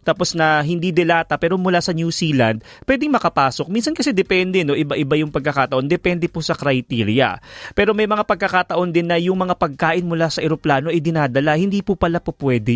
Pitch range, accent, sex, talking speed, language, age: 135-175 Hz, native, male, 190 wpm, Filipino, 20-39